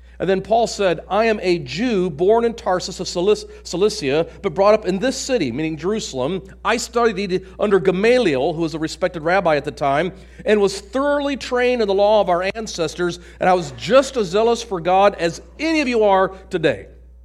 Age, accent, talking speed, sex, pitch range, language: 50-69, American, 200 wpm, male, 175-225 Hz, English